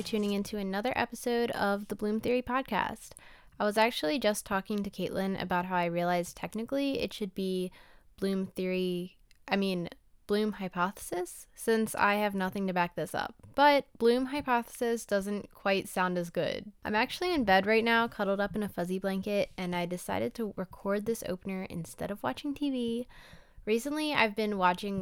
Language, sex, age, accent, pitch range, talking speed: English, female, 10-29, American, 175-220 Hz, 175 wpm